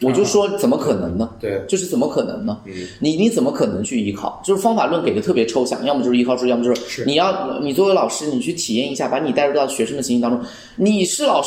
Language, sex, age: Chinese, male, 20-39